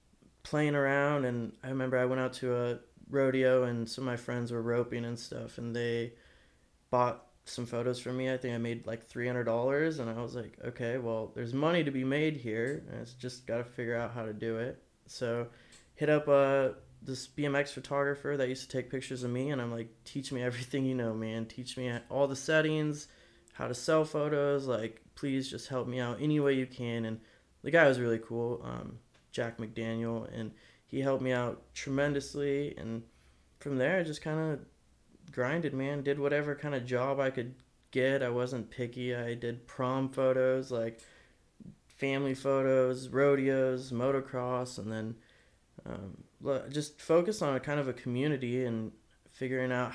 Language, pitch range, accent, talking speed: English, 120-135 Hz, American, 190 wpm